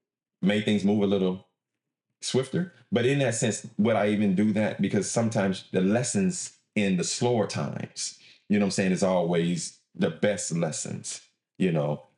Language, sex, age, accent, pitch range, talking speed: English, male, 30-49, American, 95-125 Hz, 170 wpm